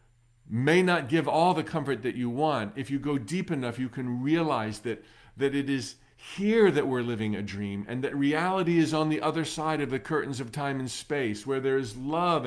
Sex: male